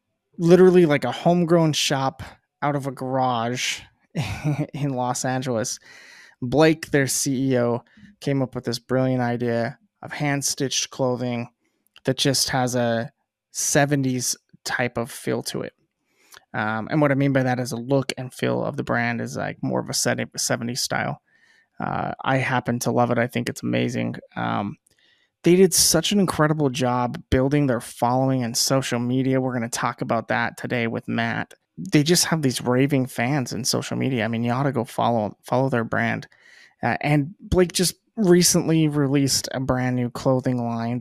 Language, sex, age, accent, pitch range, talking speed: English, male, 20-39, American, 120-145 Hz, 175 wpm